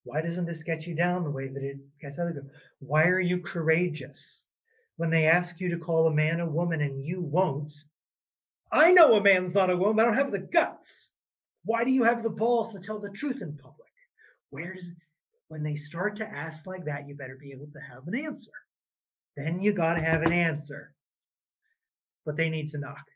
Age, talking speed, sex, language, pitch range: 30-49, 220 wpm, male, English, 145-180 Hz